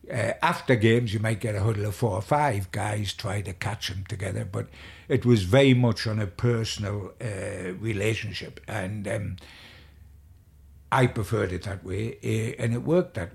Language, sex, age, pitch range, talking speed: English, male, 60-79, 95-125 Hz, 180 wpm